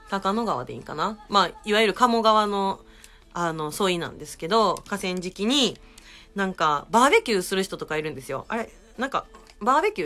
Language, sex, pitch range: Japanese, female, 155-230 Hz